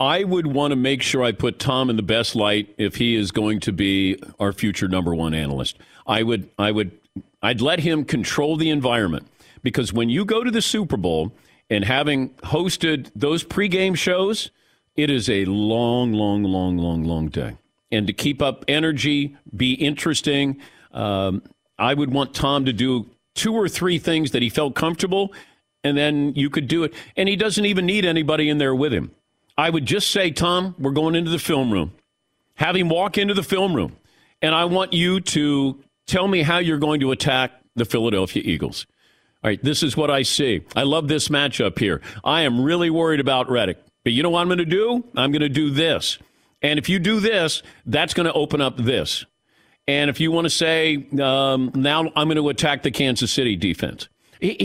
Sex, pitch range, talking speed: male, 120-165 Hz, 205 wpm